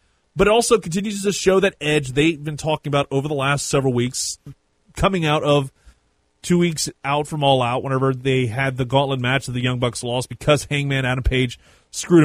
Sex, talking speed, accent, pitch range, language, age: male, 205 wpm, American, 125-155 Hz, English, 30-49